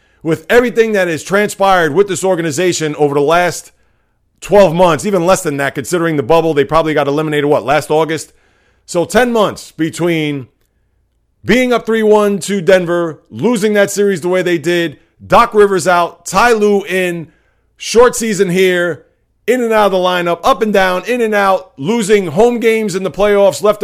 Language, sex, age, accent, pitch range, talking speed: English, male, 40-59, American, 160-210 Hz, 180 wpm